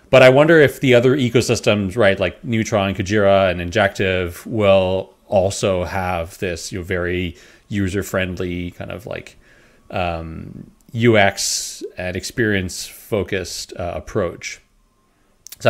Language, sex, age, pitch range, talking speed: English, male, 30-49, 85-105 Hz, 120 wpm